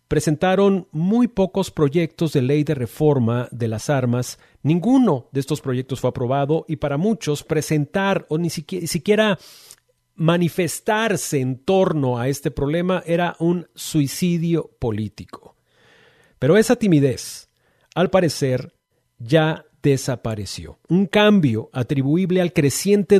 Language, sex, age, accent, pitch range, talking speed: Spanish, male, 40-59, Mexican, 130-170 Hz, 120 wpm